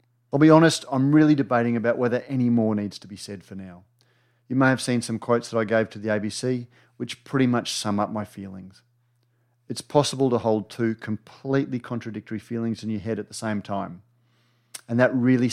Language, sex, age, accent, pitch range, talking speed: English, male, 40-59, Australian, 110-125 Hz, 205 wpm